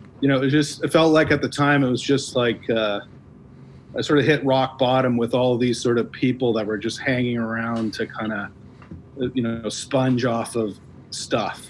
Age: 40-59